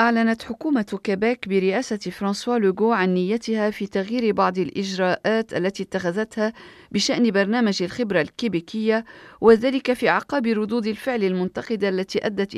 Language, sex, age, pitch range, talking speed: Arabic, female, 40-59, 180-225 Hz, 125 wpm